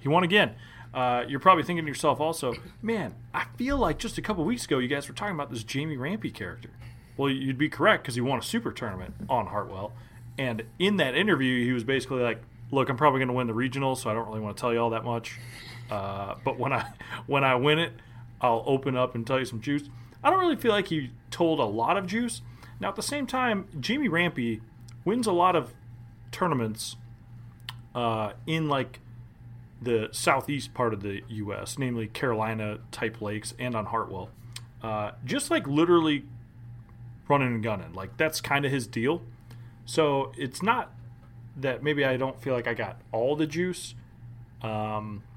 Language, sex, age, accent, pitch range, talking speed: English, male, 30-49, American, 115-140 Hz, 200 wpm